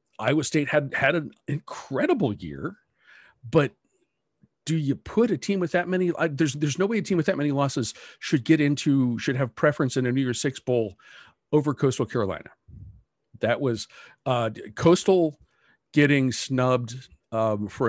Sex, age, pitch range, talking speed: male, 50-69, 110-145 Hz, 175 wpm